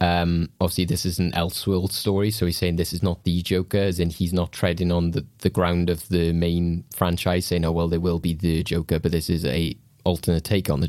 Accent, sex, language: British, male, English